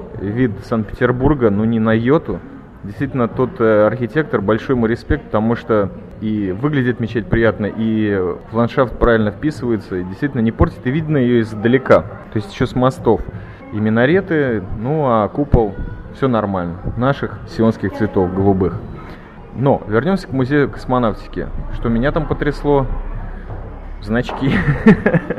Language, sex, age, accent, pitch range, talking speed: Russian, male, 20-39, native, 110-140 Hz, 135 wpm